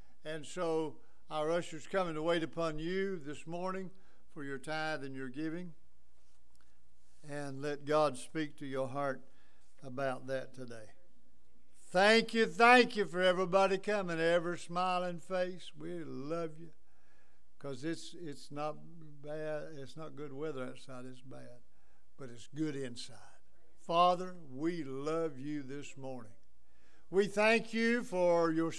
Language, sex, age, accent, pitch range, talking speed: English, male, 60-79, American, 150-190 Hz, 140 wpm